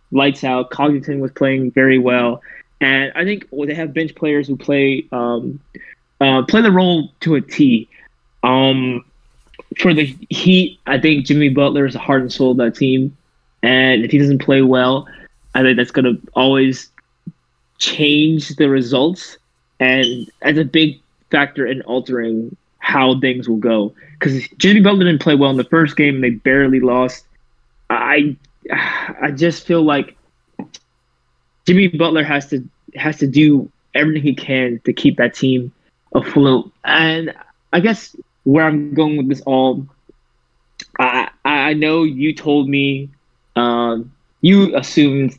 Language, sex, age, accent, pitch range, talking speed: English, male, 20-39, American, 125-155 Hz, 155 wpm